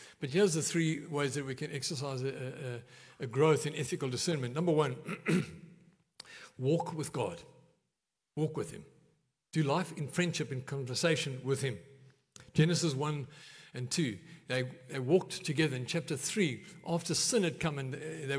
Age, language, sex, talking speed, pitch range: 60-79, English, male, 155 wpm, 140-170 Hz